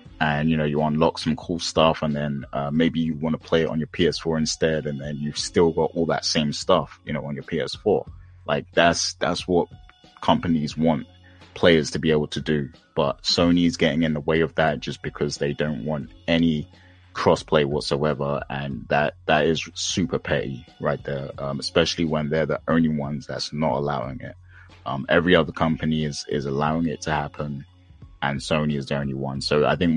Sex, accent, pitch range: male, British, 75-85 Hz